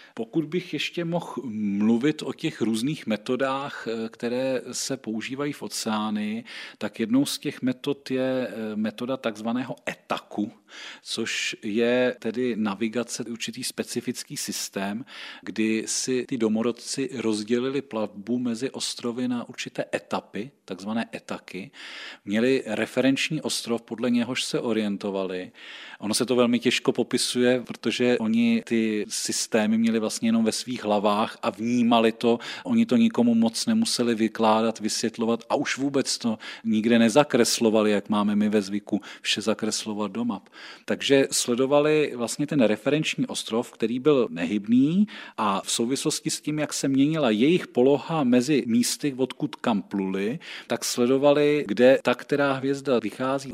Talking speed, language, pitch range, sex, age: 135 wpm, Czech, 110-140 Hz, male, 40-59